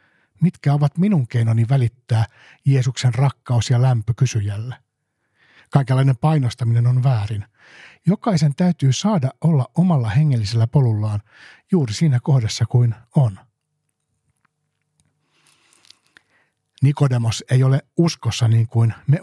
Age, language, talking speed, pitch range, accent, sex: 60-79, Finnish, 100 wpm, 115-150 Hz, native, male